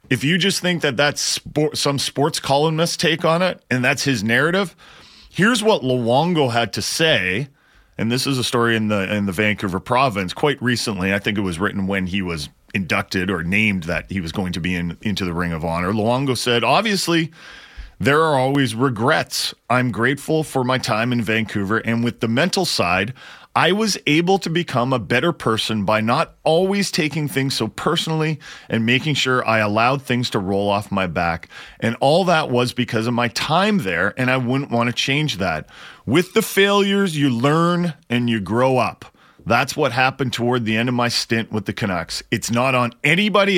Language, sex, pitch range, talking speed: English, male, 110-155 Hz, 200 wpm